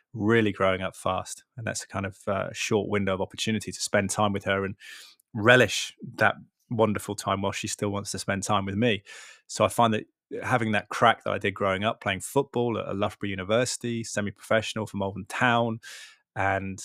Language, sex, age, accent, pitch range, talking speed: English, male, 20-39, British, 100-110 Hz, 195 wpm